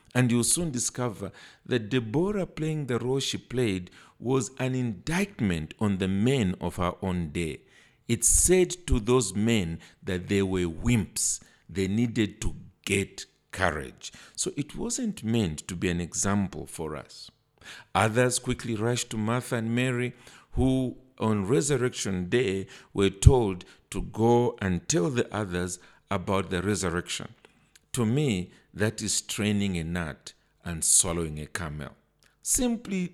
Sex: male